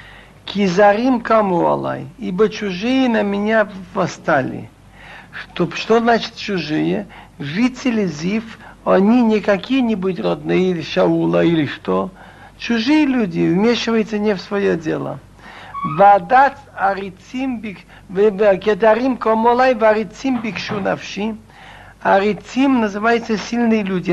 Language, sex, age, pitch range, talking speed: Russian, male, 60-79, 185-230 Hz, 95 wpm